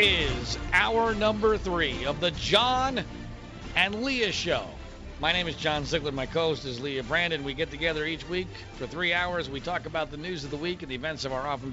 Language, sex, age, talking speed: English, male, 40-59, 215 wpm